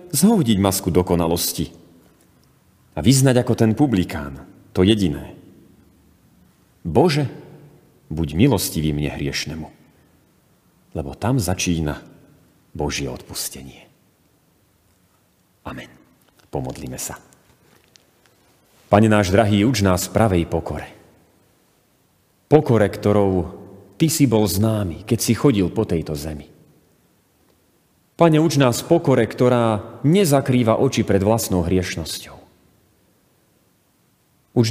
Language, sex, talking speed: Slovak, male, 90 wpm